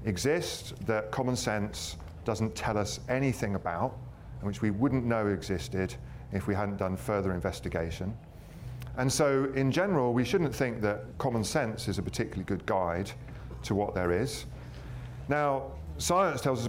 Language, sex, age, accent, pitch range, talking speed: English, male, 40-59, British, 100-130 Hz, 160 wpm